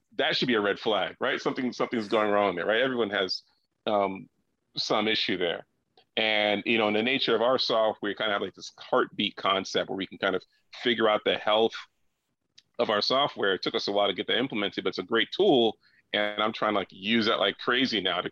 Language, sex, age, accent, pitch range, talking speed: English, male, 40-59, American, 100-115 Hz, 240 wpm